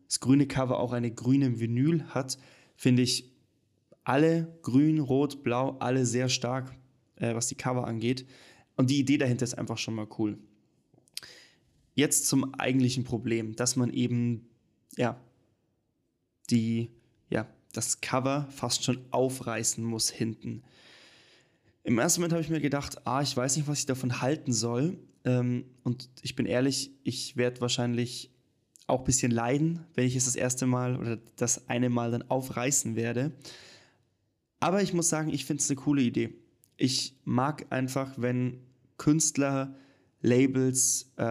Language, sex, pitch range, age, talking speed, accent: German, male, 120-135 Hz, 20-39, 155 wpm, German